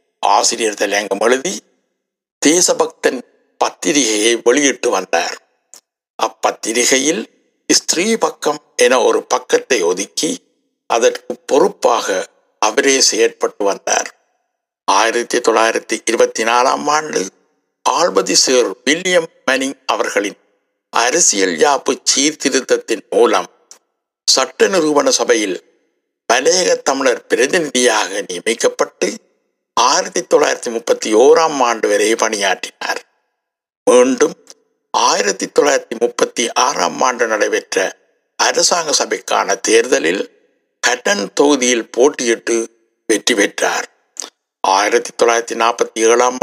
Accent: native